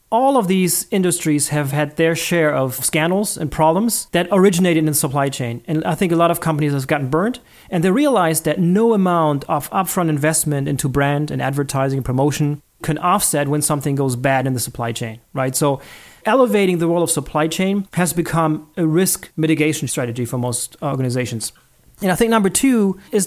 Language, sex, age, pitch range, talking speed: English, male, 30-49, 145-190 Hz, 195 wpm